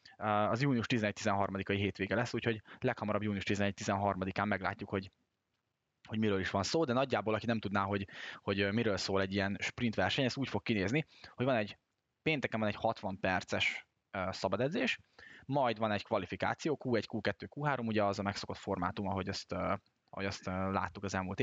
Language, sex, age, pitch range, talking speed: Hungarian, male, 10-29, 100-115 Hz, 170 wpm